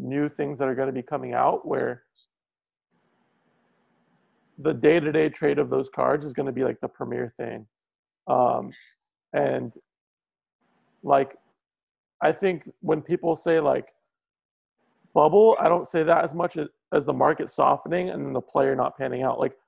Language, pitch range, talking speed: English, 145-180 Hz, 155 wpm